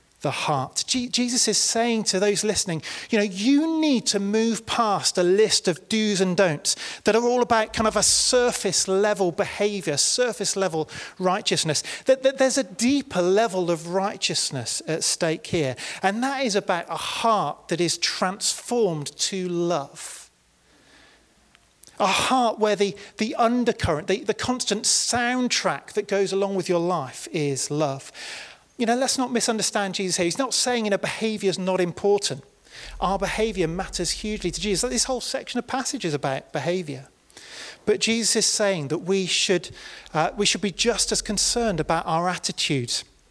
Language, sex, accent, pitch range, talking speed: English, male, British, 160-220 Hz, 170 wpm